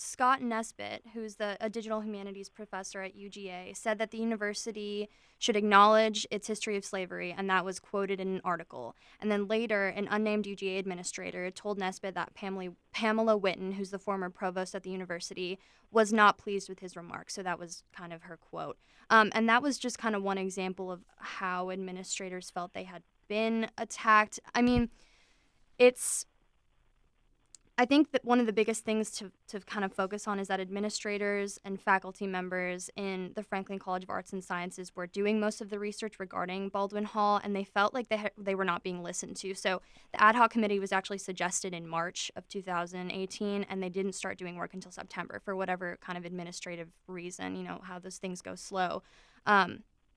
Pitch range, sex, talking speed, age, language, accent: 185-210 Hz, female, 195 wpm, 20-39, English, American